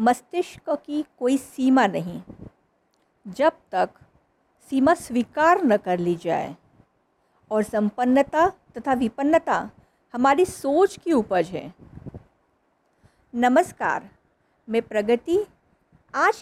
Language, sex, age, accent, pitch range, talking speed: Hindi, female, 50-69, native, 225-300 Hz, 95 wpm